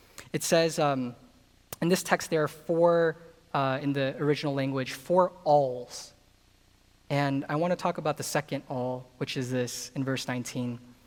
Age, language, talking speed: 20-39, English, 170 wpm